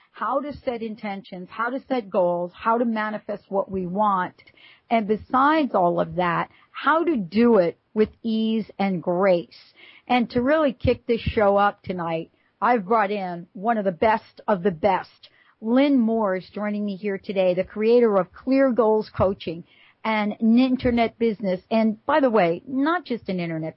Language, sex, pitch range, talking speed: English, female, 195-245 Hz, 175 wpm